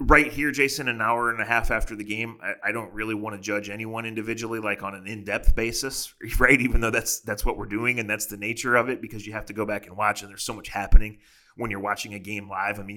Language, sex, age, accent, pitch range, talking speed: English, male, 30-49, American, 100-120 Hz, 280 wpm